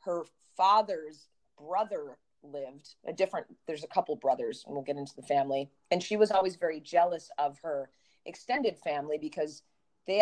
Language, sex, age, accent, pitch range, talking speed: English, female, 30-49, American, 150-200 Hz, 165 wpm